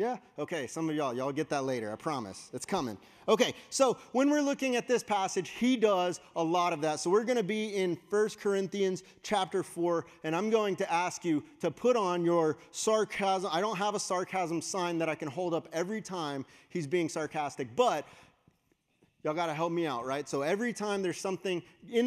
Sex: male